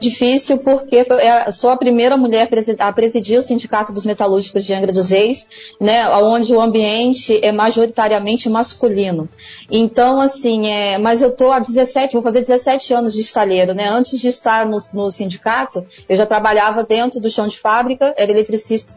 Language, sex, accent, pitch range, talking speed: Portuguese, female, Brazilian, 220-260 Hz, 170 wpm